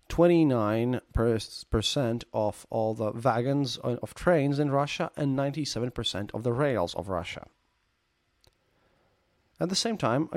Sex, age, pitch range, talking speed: male, 30-49, 115-140 Hz, 115 wpm